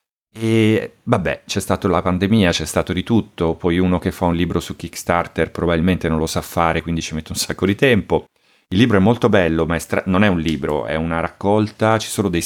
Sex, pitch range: male, 85-100 Hz